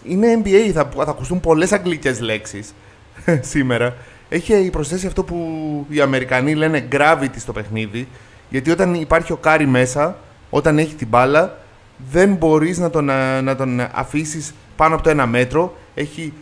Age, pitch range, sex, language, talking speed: 30-49, 125-170 Hz, male, Greek, 155 wpm